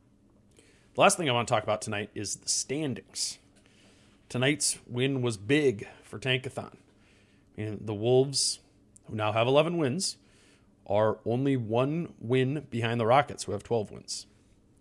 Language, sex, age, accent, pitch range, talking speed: English, male, 30-49, American, 100-130 Hz, 155 wpm